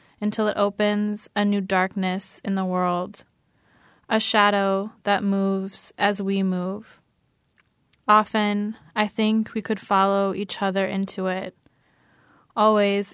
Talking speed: 125 wpm